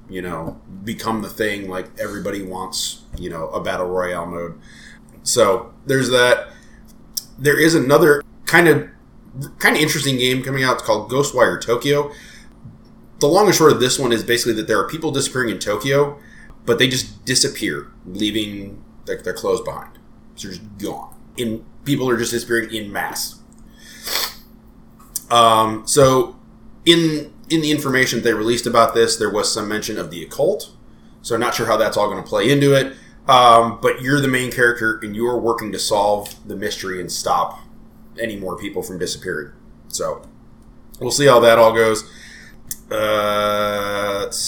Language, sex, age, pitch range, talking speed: English, male, 20-39, 105-130 Hz, 170 wpm